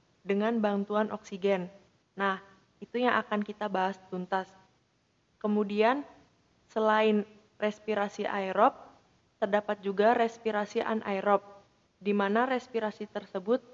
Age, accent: 20-39, native